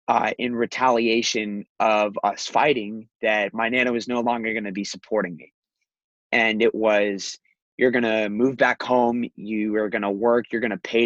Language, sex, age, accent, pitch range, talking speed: English, male, 20-39, American, 105-120 Hz, 190 wpm